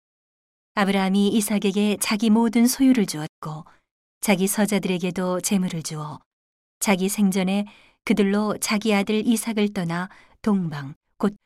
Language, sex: Korean, female